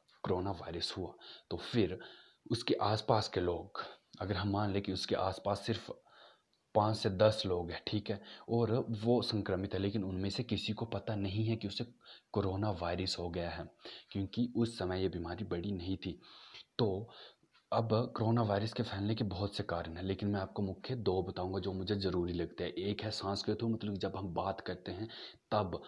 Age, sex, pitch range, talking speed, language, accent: 30-49, male, 95-115 Hz, 190 wpm, Hindi, native